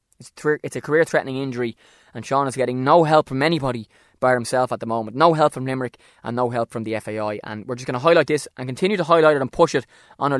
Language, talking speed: English, 255 wpm